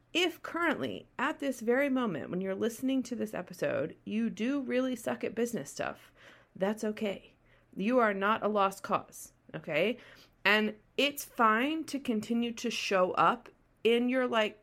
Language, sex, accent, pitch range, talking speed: English, female, American, 175-240 Hz, 160 wpm